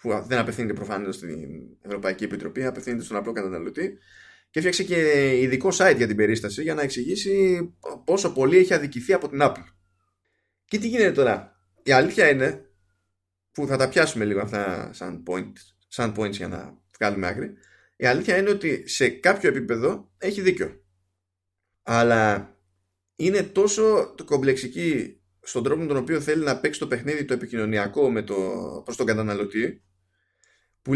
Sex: male